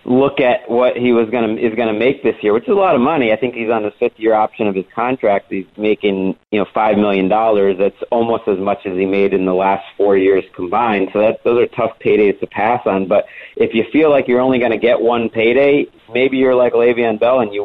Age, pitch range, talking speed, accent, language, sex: 40-59, 100-120 Hz, 255 wpm, American, English, male